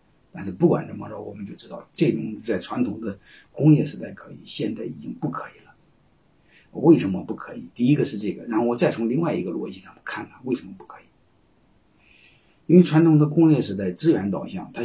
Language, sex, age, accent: Chinese, male, 50-69, native